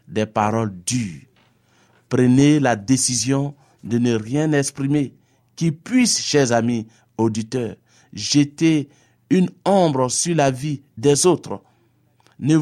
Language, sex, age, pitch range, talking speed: French, male, 50-69, 120-150 Hz, 115 wpm